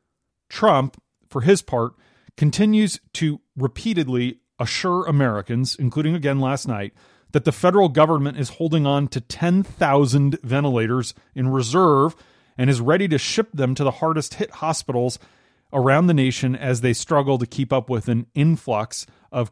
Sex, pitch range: male, 120-155 Hz